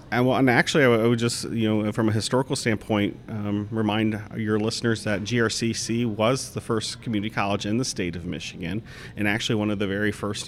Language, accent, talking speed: English, American, 200 wpm